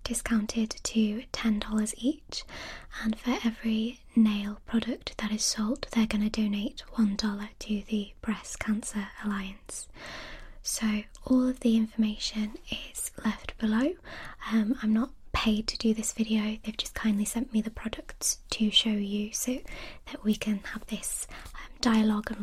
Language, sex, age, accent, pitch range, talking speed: English, female, 20-39, British, 195-230 Hz, 155 wpm